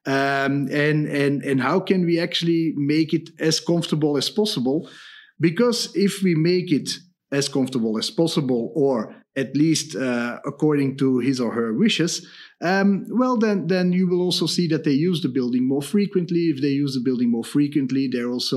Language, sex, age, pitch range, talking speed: English, male, 40-59, 135-165 Hz, 180 wpm